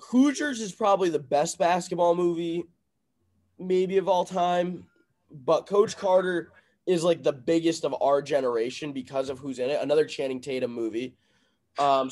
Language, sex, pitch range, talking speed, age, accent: English, male, 130-170 Hz, 155 wpm, 20-39, American